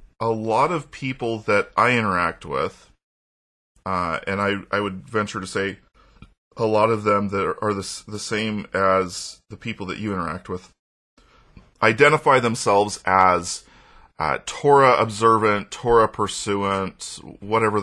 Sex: male